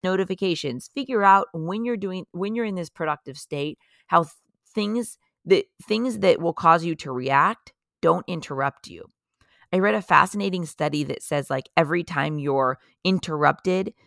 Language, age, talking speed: English, 30-49, 160 wpm